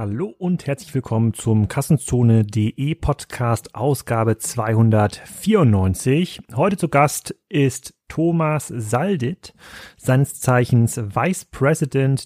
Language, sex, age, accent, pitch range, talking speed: German, male, 30-49, German, 120-150 Hz, 95 wpm